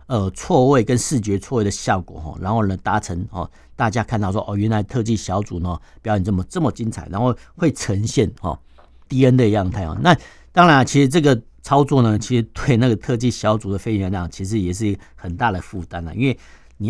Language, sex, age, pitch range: Chinese, male, 50-69, 90-130 Hz